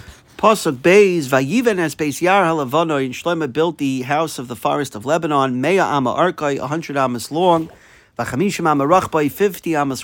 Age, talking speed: 50-69, 155 wpm